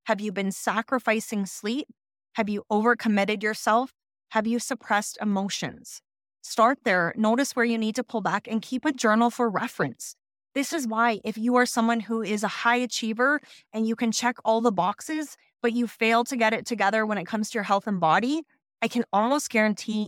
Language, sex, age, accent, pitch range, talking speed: English, female, 20-39, American, 195-245 Hz, 195 wpm